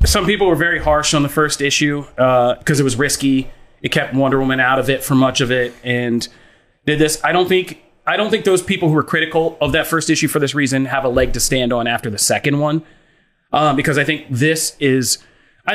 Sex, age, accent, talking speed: male, 30-49, American, 240 wpm